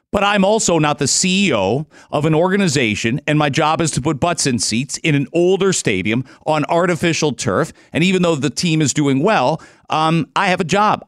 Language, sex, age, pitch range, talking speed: English, male, 40-59, 145-190 Hz, 205 wpm